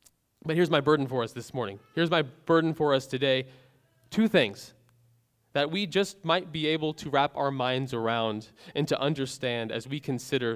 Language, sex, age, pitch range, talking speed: English, male, 20-39, 125-165 Hz, 190 wpm